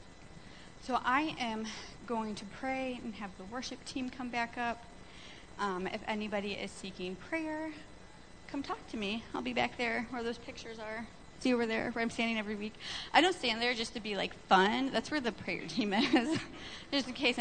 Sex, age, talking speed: female, 30-49, 200 wpm